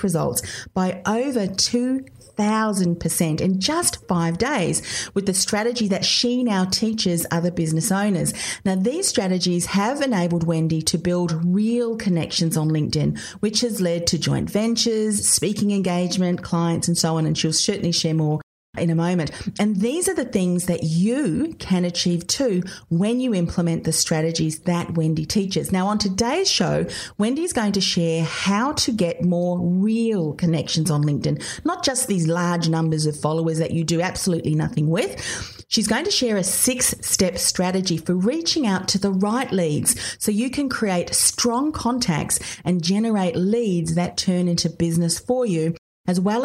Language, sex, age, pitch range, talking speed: English, female, 40-59, 165-220 Hz, 165 wpm